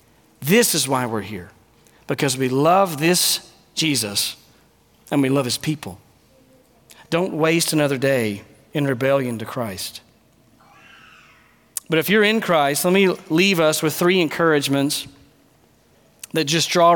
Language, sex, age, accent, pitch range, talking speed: English, male, 40-59, American, 135-175 Hz, 135 wpm